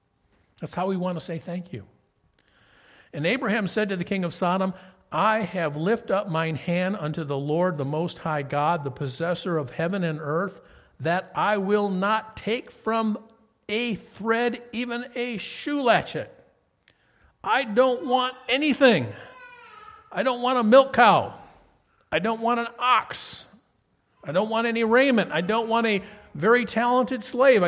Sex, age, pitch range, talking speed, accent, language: male, 50-69, 145-225 Hz, 160 wpm, American, English